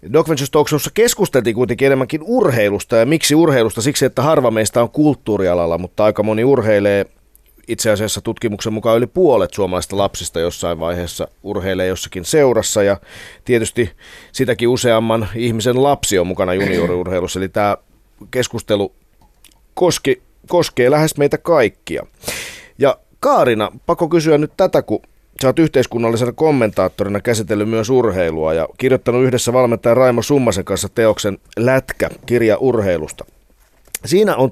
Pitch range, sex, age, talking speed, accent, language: 100-145 Hz, male, 30-49, 130 wpm, native, Finnish